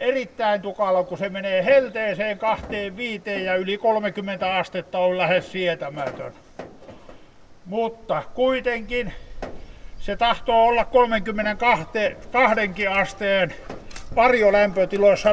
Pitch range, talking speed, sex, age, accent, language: 160-205 Hz, 85 wpm, male, 60-79, native, Finnish